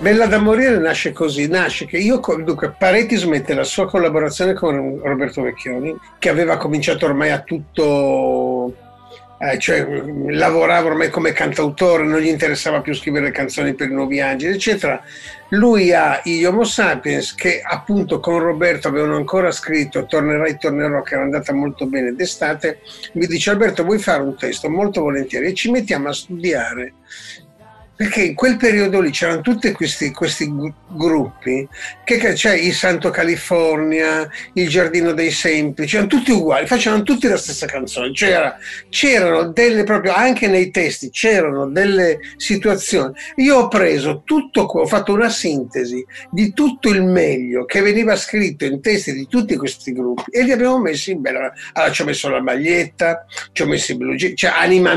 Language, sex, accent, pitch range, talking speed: Italian, male, native, 150-210 Hz, 165 wpm